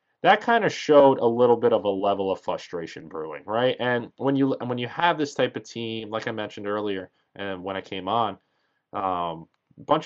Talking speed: 220 wpm